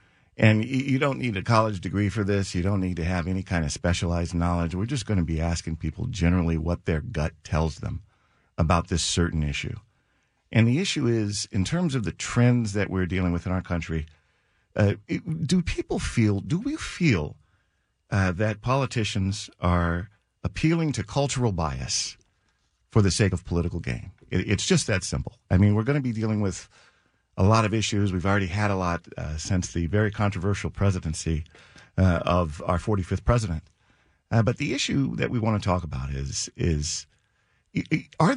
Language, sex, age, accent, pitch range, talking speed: English, male, 50-69, American, 85-115 Hz, 185 wpm